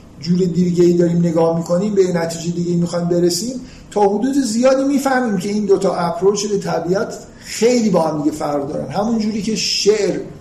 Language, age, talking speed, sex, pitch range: Persian, 50-69, 175 wpm, male, 165-195 Hz